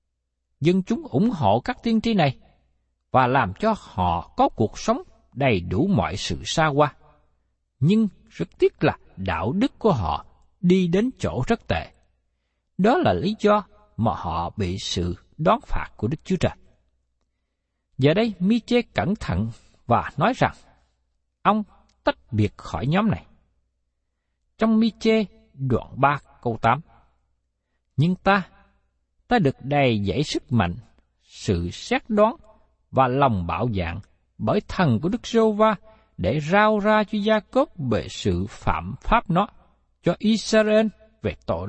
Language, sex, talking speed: Vietnamese, male, 150 wpm